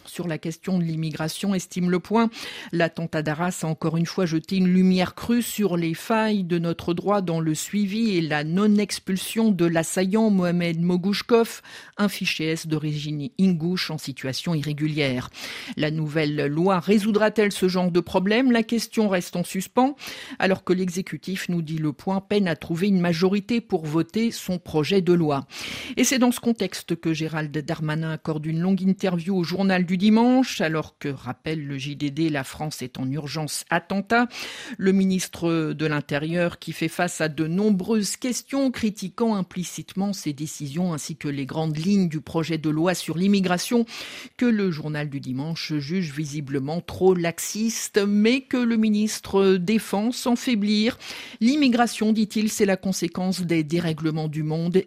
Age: 50-69